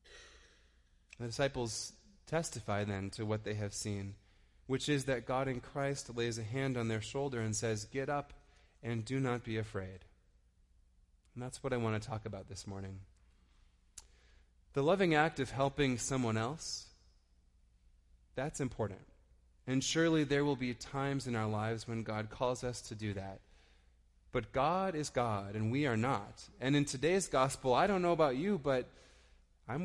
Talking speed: 170 wpm